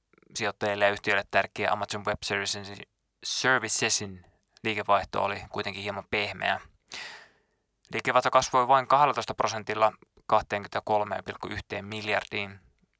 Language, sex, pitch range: Finnish, male, 100-110 Hz